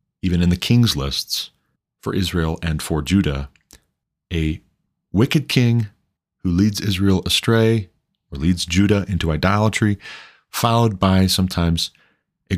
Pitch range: 80-100 Hz